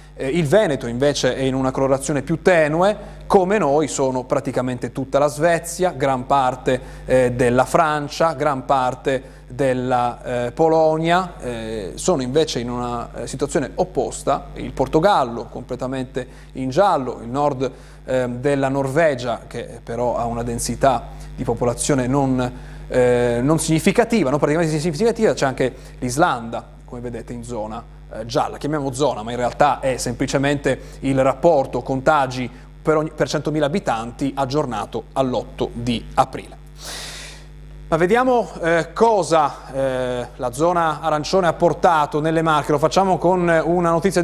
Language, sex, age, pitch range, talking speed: Italian, male, 30-49, 130-165 Hz, 135 wpm